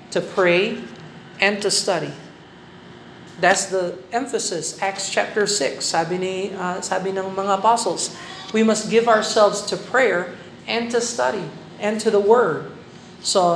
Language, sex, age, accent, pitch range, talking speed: Filipino, male, 50-69, American, 180-220 Hz, 140 wpm